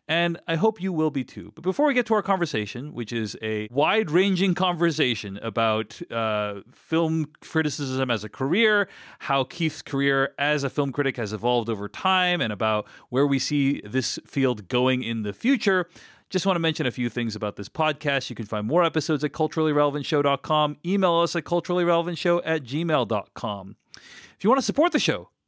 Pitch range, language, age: 115-170 Hz, English, 40-59